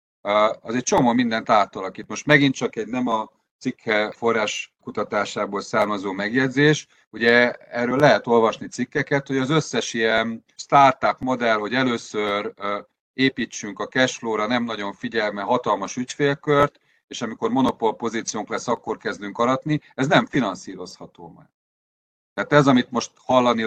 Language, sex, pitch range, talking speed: Hungarian, male, 110-140 Hz, 140 wpm